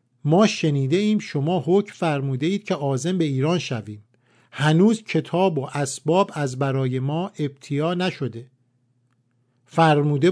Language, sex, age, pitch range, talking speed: Persian, male, 50-69, 130-195 Hz, 120 wpm